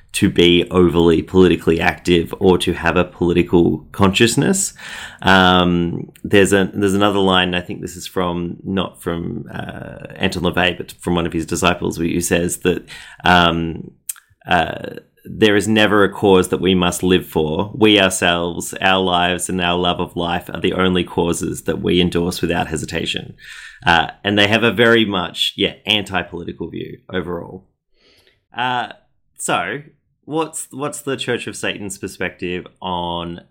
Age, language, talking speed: 30-49, English, 155 wpm